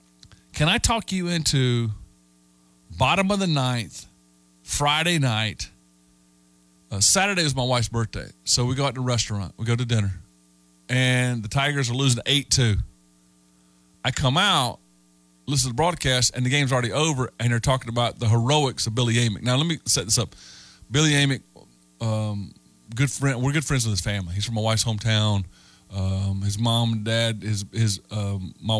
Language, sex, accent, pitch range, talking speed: English, male, American, 90-125 Hz, 175 wpm